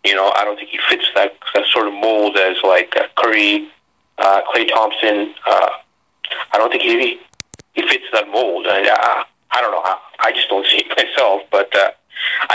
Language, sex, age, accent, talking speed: English, male, 30-49, American, 195 wpm